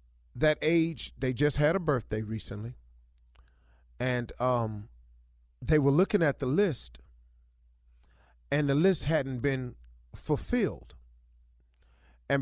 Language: English